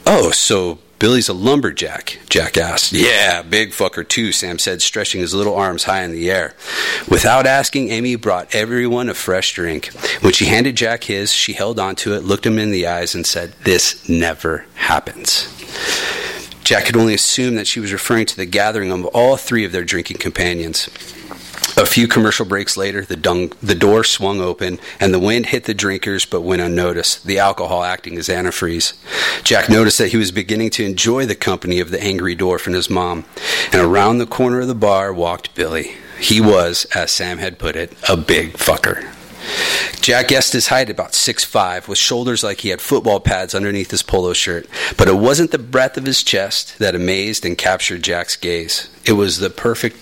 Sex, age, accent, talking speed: male, 30-49, American, 195 wpm